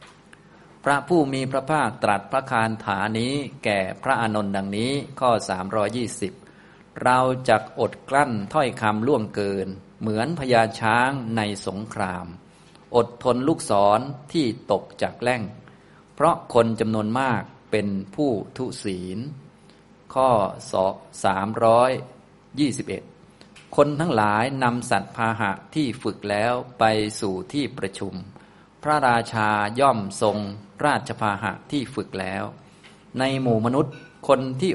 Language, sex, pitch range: Thai, male, 100-125 Hz